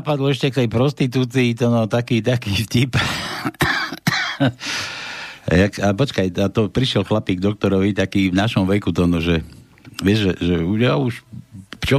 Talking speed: 145 wpm